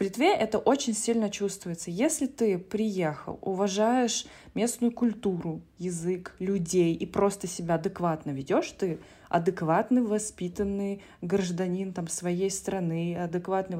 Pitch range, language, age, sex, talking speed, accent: 180-220 Hz, Russian, 20-39, female, 115 wpm, native